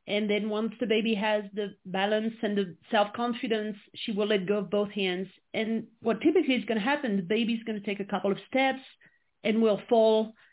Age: 40-59